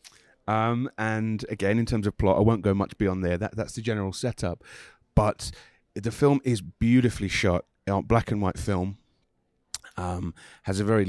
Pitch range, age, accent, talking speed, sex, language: 95-115 Hz, 30-49, British, 175 wpm, male, English